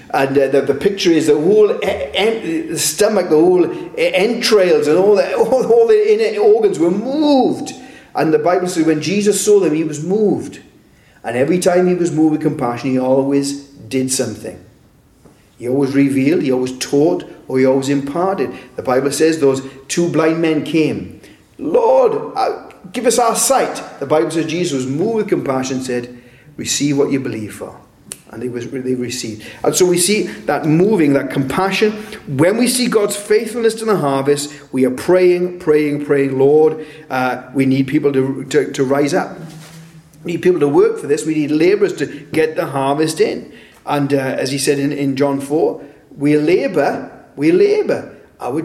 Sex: male